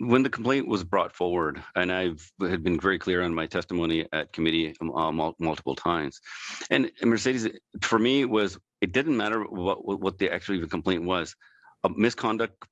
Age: 40-59